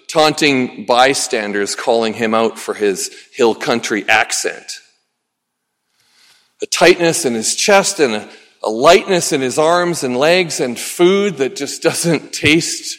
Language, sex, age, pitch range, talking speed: English, male, 40-59, 135-220 Hz, 135 wpm